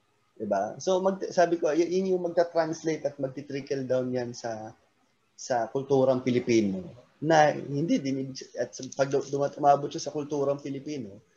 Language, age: Filipino, 20-39